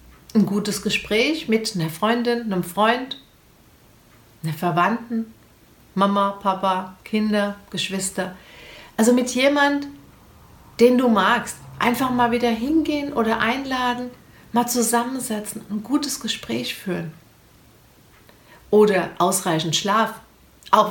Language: German